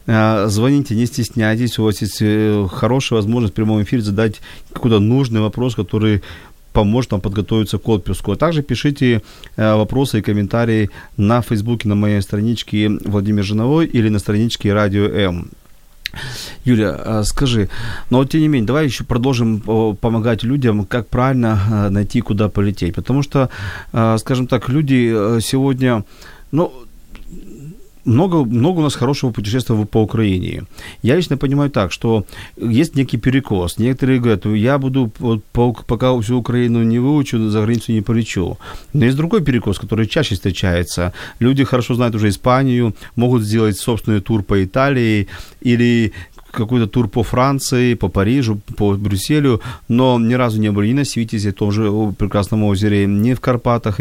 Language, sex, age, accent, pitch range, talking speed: Ukrainian, male, 40-59, native, 105-125 Hz, 150 wpm